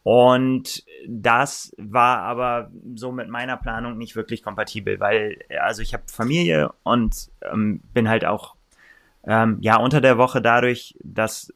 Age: 20-39